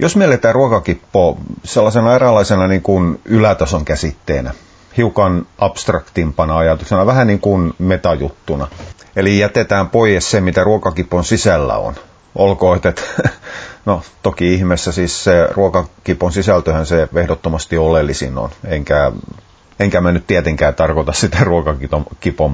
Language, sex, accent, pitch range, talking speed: Finnish, male, native, 80-100 Hz, 120 wpm